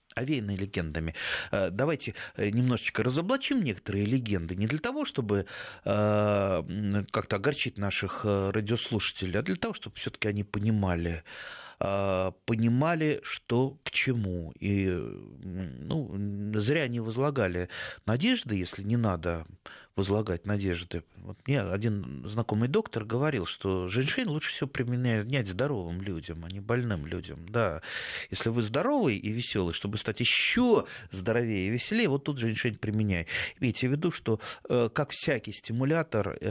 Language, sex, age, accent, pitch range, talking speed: Russian, male, 30-49, native, 100-125 Hz, 130 wpm